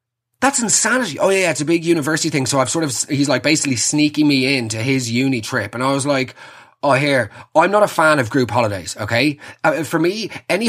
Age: 20-39